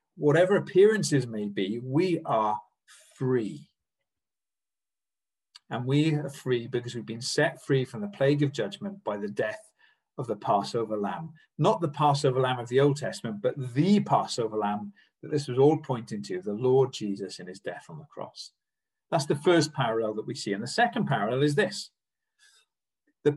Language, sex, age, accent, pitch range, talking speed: English, male, 40-59, British, 120-160 Hz, 175 wpm